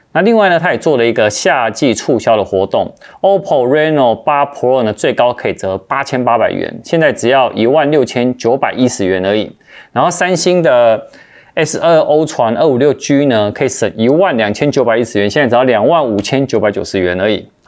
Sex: male